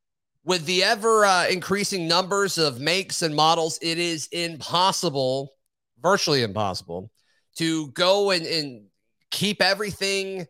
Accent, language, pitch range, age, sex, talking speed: American, English, 135-175 Hz, 30-49, male, 115 wpm